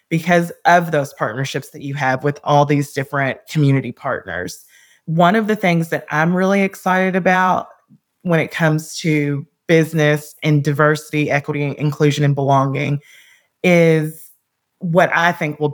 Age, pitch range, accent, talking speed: 20-39, 145-170 Hz, American, 145 wpm